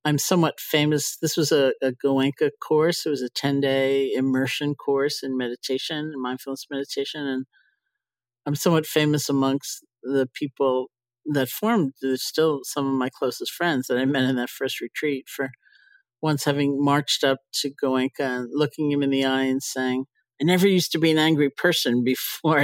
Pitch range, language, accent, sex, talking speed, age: 130-155 Hz, English, American, male, 170 wpm, 50-69